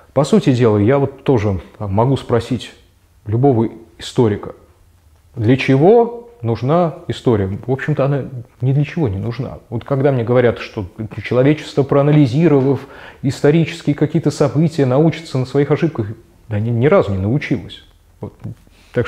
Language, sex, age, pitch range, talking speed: Russian, male, 20-39, 110-145 Hz, 140 wpm